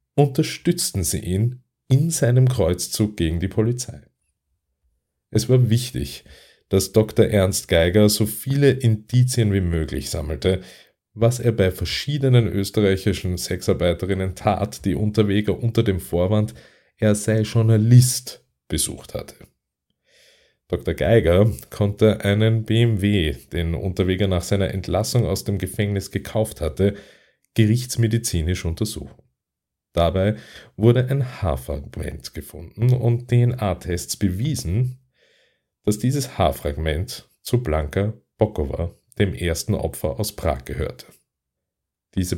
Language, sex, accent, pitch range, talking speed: German, male, Austrian, 85-115 Hz, 110 wpm